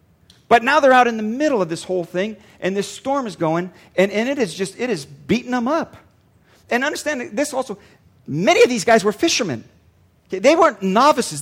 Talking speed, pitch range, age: 205 wpm, 190-260 Hz, 40-59